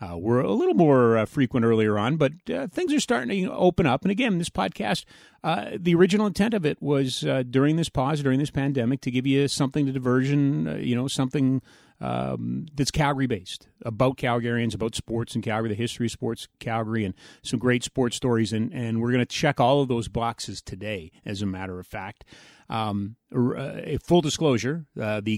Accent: American